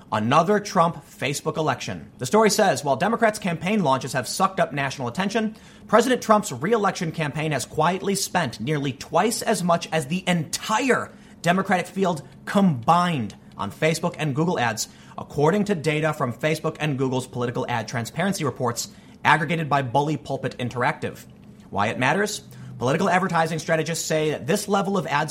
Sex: male